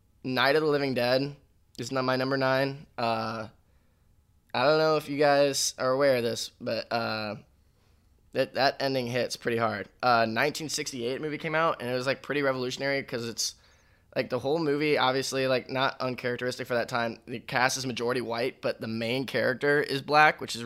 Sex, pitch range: male, 115-130 Hz